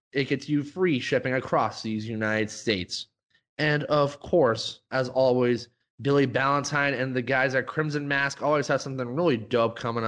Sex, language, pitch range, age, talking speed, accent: male, English, 130-155 Hz, 20-39, 165 wpm, American